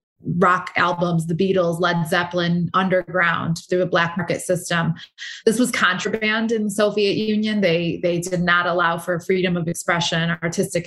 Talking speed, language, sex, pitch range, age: 160 wpm, English, female, 175-200 Hz, 20-39